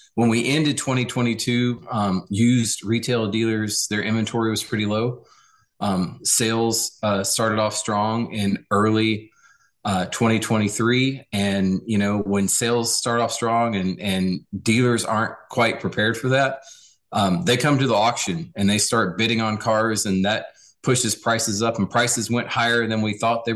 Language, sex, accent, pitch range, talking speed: English, male, American, 100-120 Hz, 165 wpm